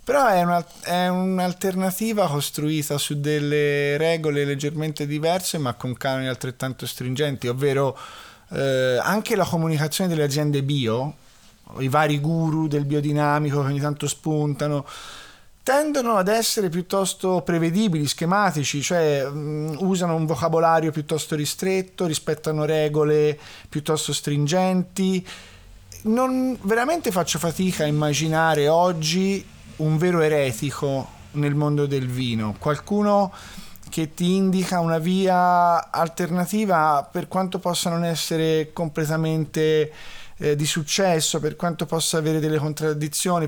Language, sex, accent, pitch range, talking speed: Italian, male, native, 140-180 Hz, 115 wpm